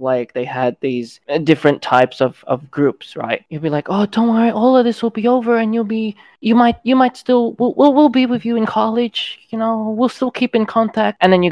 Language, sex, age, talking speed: English, male, 20-39, 245 wpm